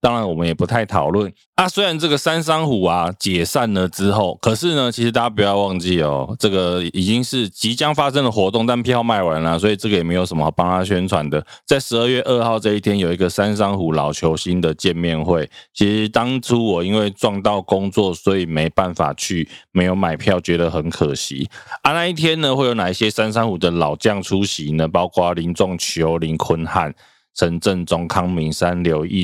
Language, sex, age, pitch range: Chinese, male, 20-39, 85-110 Hz